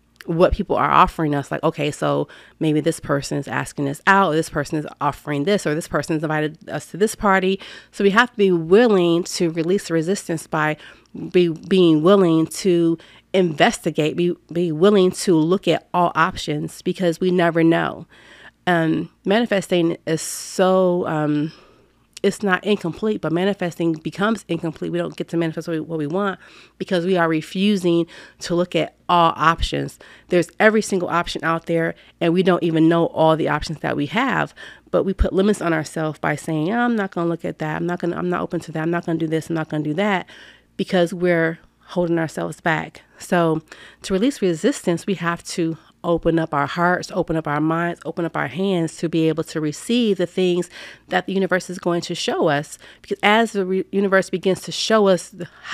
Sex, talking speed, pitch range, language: female, 205 wpm, 160-185 Hz, English